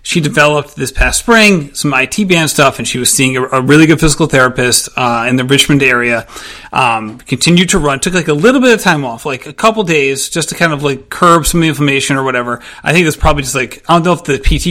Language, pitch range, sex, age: English, 135-185 Hz, male, 30-49